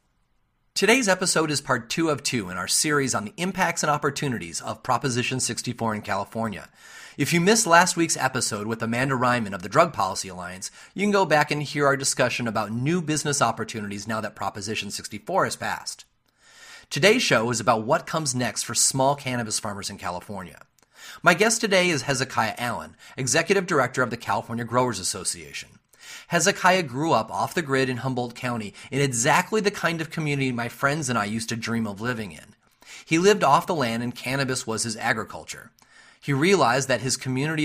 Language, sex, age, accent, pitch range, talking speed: English, male, 30-49, American, 115-155 Hz, 190 wpm